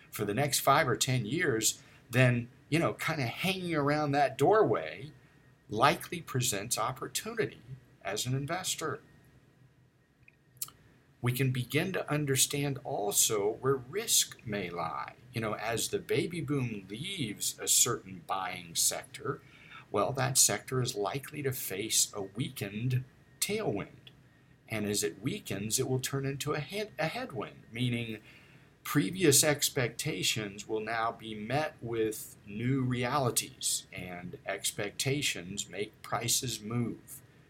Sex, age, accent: male, 50-69, American